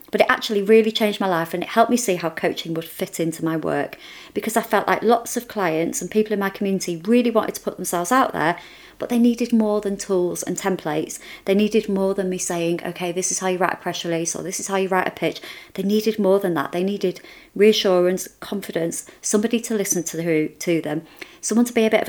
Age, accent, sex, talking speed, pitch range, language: 30-49, British, female, 245 wpm, 170-225 Hz, English